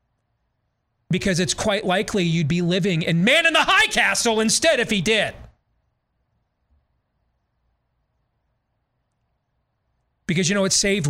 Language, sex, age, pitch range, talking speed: English, male, 30-49, 120-175 Hz, 120 wpm